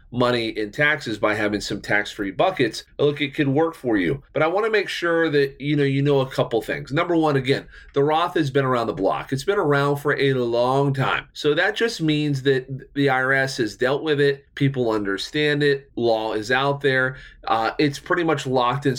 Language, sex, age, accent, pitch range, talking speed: English, male, 30-49, American, 120-150 Hz, 220 wpm